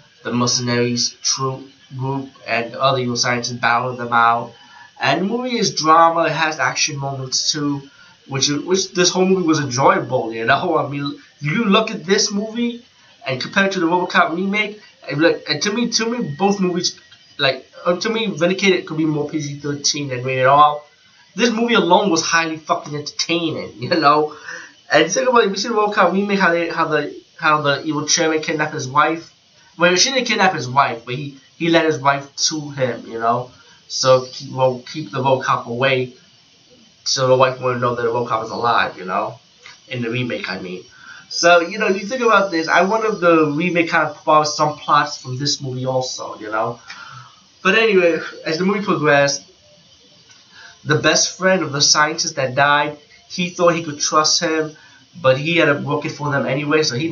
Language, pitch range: English, 135-175 Hz